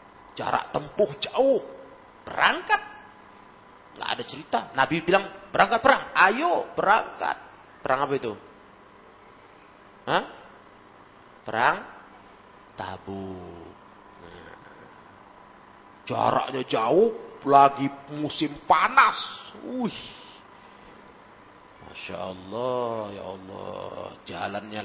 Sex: male